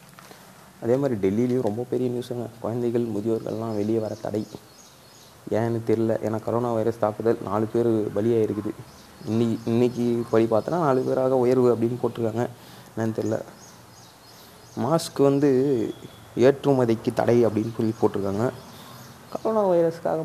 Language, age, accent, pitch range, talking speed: Tamil, 20-39, native, 110-125 Hz, 120 wpm